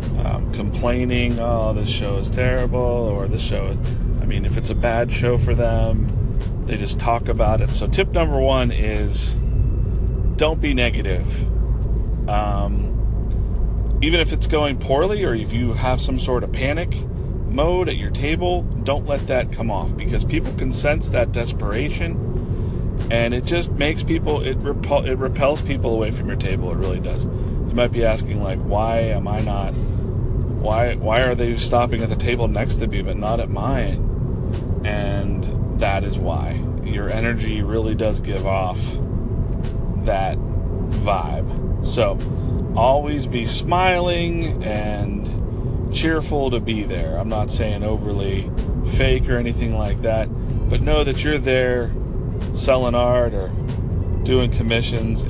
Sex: male